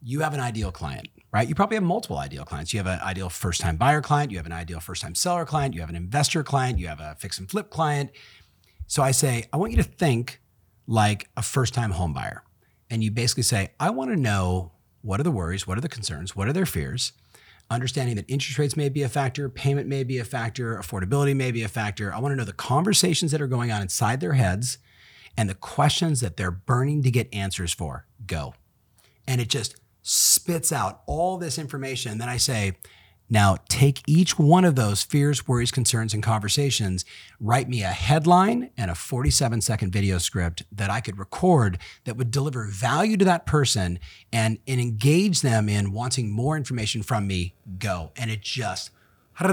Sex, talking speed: male, 205 wpm